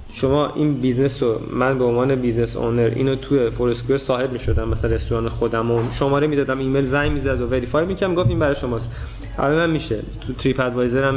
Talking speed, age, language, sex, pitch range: 195 wpm, 20-39, Persian, male, 120-150 Hz